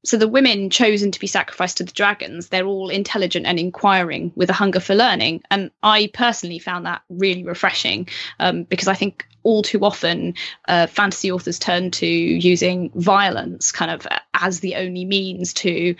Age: 20-39